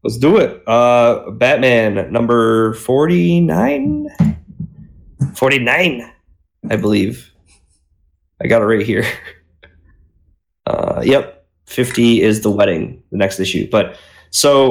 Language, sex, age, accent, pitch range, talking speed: English, male, 20-39, American, 95-115 Hz, 105 wpm